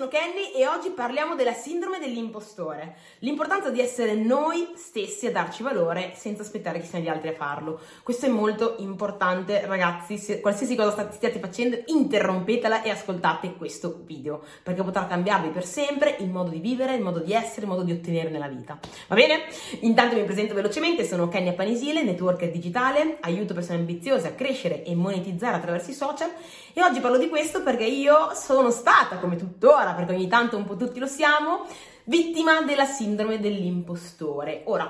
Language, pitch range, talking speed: Italian, 170-245 Hz, 175 wpm